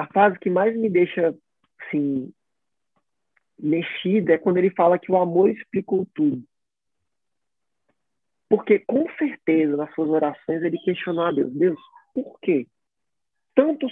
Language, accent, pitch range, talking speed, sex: Portuguese, Brazilian, 180-260 Hz, 140 wpm, male